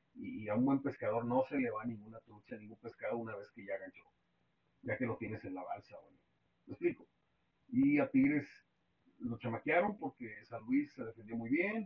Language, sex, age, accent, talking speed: Spanish, male, 40-59, Mexican, 210 wpm